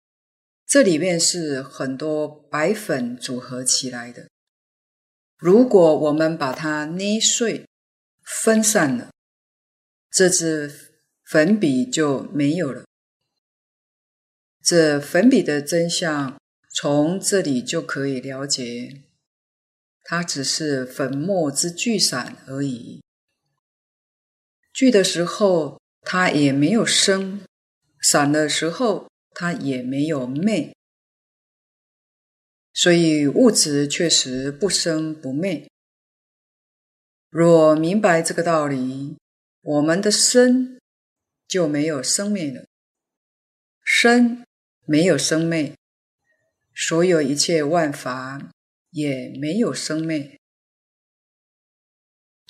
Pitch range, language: 140-175 Hz, Chinese